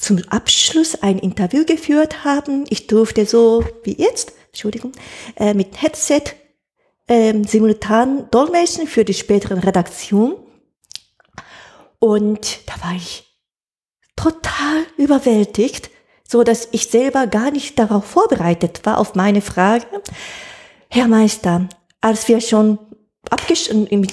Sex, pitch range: female, 200-275 Hz